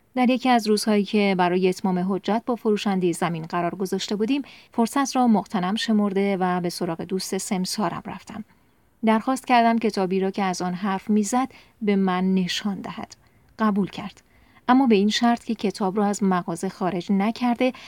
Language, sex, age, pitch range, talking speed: Persian, female, 40-59, 185-220 Hz, 170 wpm